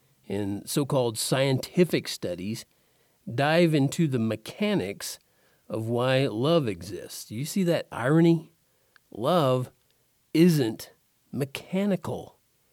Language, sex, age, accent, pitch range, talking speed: English, male, 50-69, American, 130-185 Hz, 95 wpm